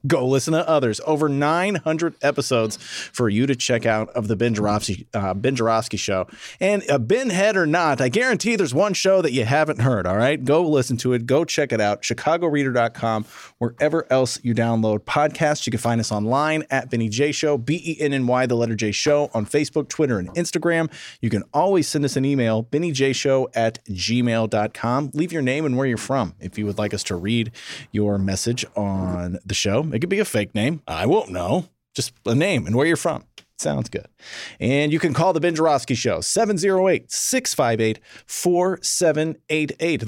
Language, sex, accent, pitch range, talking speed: English, male, American, 115-155 Hz, 200 wpm